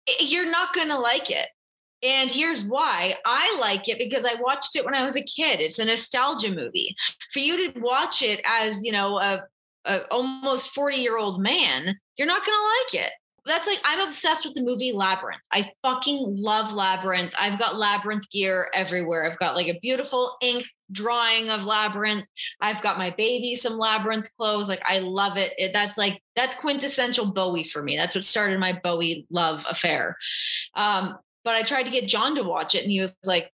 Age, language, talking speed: 20-39, English, 200 wpm